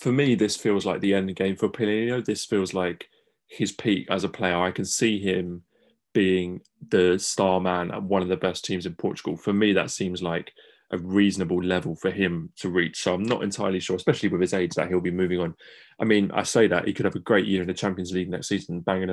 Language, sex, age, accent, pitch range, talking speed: English, male, 20-39, British, 90-105 Hz, 245 wpm